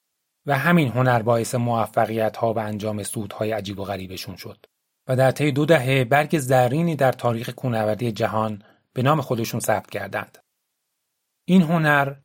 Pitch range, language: 115-150 Hz, Persian